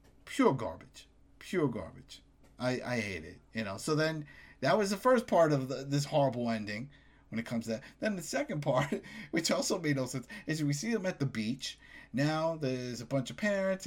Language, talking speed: English, 210 wpm